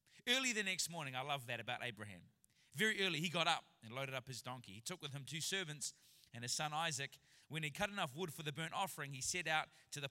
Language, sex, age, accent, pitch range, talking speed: English, male, 20-39, Australian, 135-180 Hz, 255 wpm